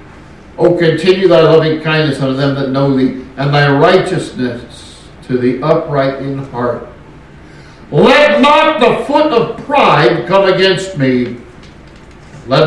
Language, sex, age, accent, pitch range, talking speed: English, male, 60-79, American, 130-180 Hz, 135 wpm